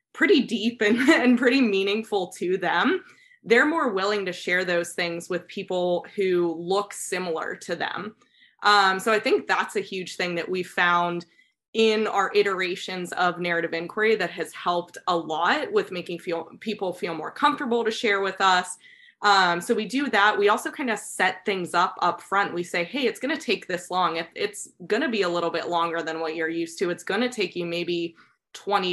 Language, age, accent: English, 20-39, American